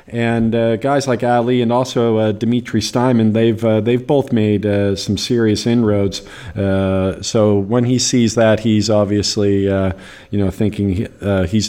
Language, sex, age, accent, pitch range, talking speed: English, male, 50-69, American, 100-115 Hz, 170 wpm